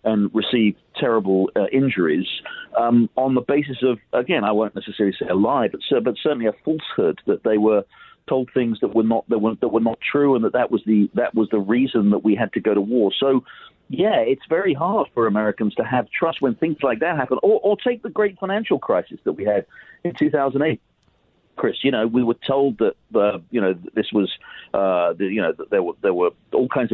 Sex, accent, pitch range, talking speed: male, British, 110-145 Hz, 240 wpm